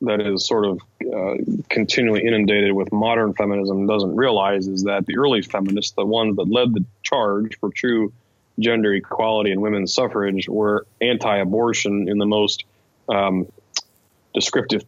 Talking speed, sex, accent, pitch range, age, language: 155 wpm, male, American, 100-115 Hz, 30-49, English